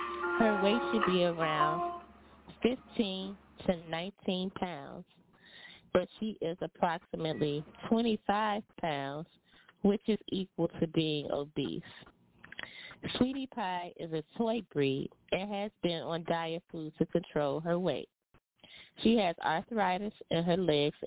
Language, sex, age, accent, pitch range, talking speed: English, female, 20-39, American, 165-210 Hz, 120 wpm